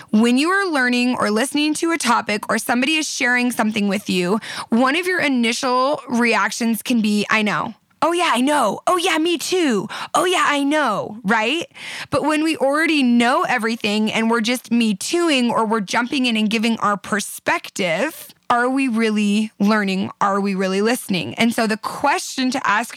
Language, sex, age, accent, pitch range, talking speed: English, female, 20-39, American, 215-265 Hz, 185 wpm